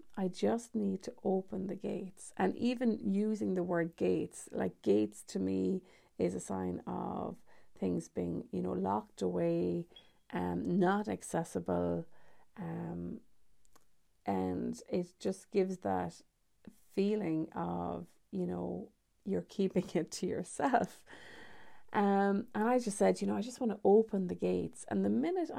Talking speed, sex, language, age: 145 wpm, female, English, 30-49